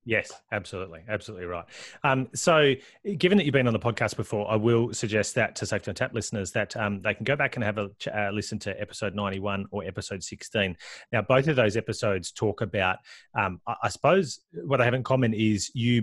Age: 30-49